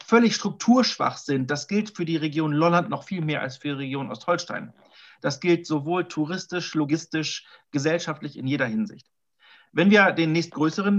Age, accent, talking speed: 40-59, German, 165 wpm